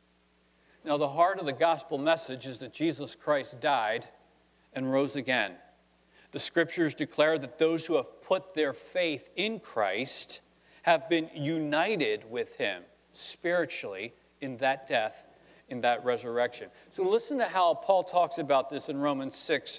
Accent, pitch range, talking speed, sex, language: American, 120-175 Hz, 150 wpm, male, English